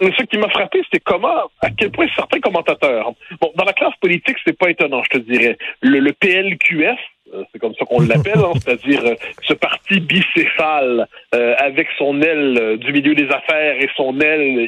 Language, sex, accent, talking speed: French, male, French, 190 wpm